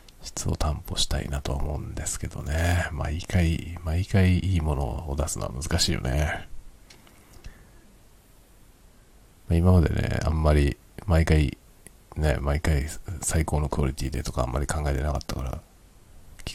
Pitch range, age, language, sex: 75-90 Hz, 50-69, Japanese, male